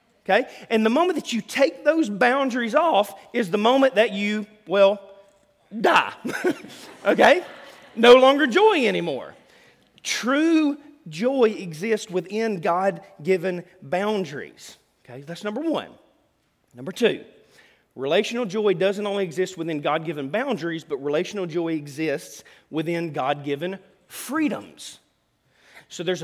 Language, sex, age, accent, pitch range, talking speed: English, male, 40-59, American, 170-240 Hz, 115 wpm